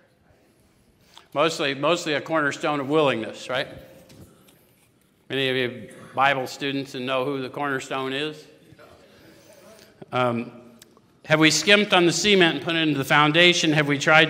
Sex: male